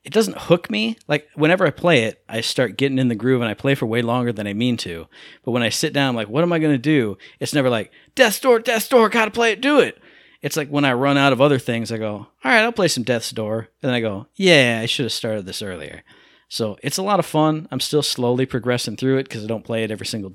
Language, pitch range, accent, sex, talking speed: English, 120-160 Hz, American, male, 285 wpm